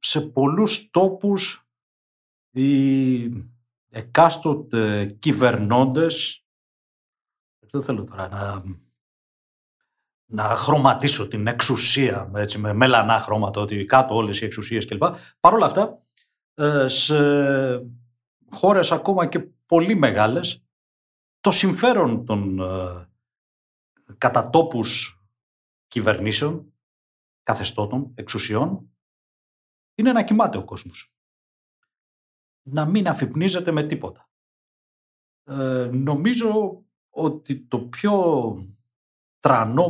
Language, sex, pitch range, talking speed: Greek, male, 105-155 Hz, 85 wpm